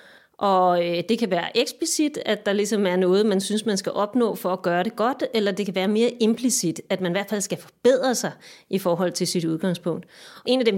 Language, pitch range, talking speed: Danish, 185-240 Hz, 235 wpm